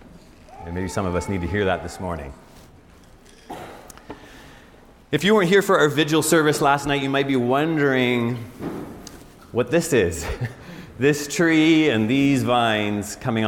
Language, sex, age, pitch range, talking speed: English, male, 30-49, 100-145 Hz, 150 wpm